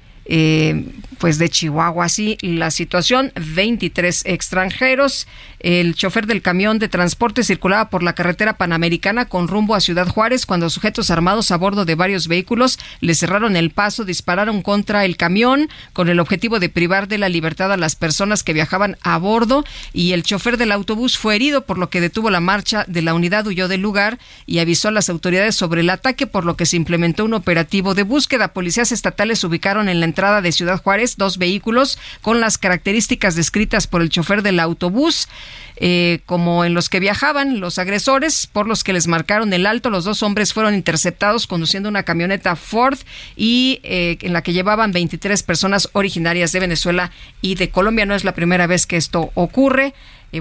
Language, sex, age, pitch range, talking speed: Spanish, female, 40-59, 175-215 Hz, 190 wpm